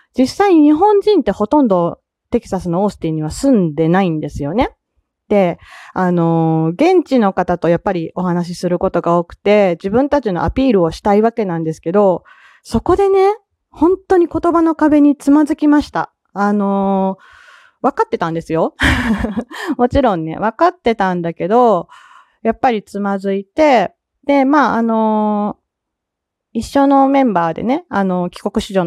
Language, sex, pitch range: Japanese, female, 180-265 Hz